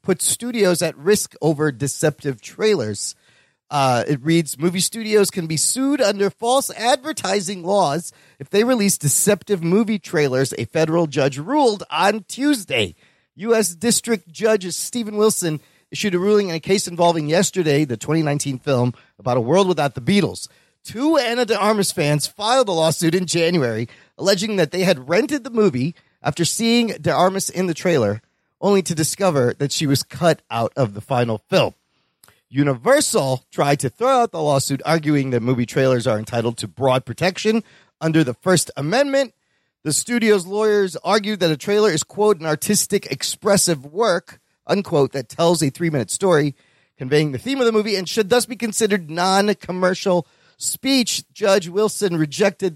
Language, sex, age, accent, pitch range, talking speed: English, male, 40-59, American, 145-210 Hz, 160 wpm